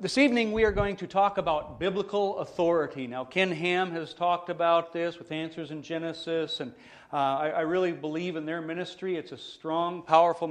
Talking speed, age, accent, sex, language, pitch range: 195 wpm, 40-59, American, male, English, 150-185 Hz